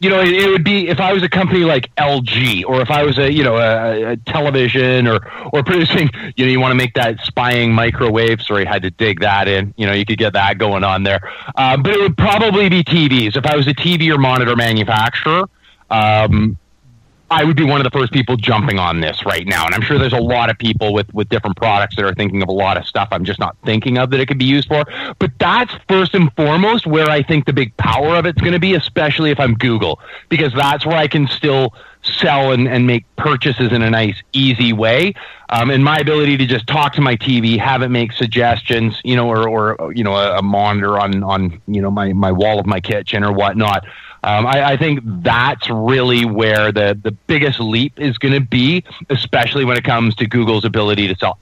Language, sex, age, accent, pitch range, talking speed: English, male, 30-49, American, 110-140 Hz, 240 wpm